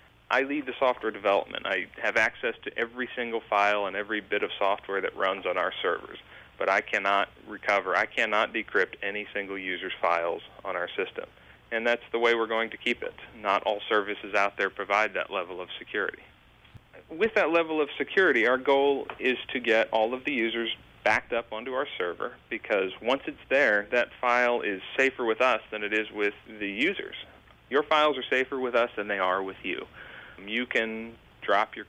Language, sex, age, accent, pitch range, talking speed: English, male, 40-59, American, 100-120 Hz, 200 wpm